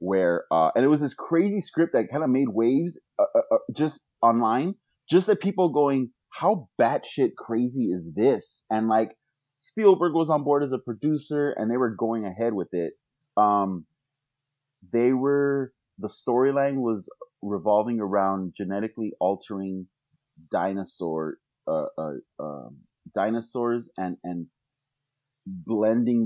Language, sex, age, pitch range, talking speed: English, male, 30-49, 110-145 Hz, 140 wpm